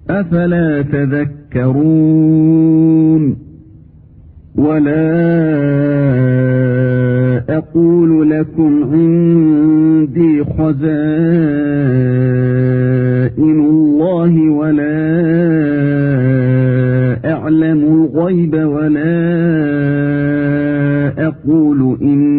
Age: 50-69